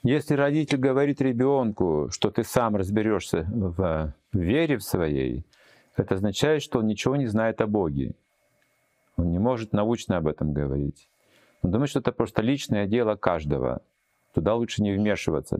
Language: Russian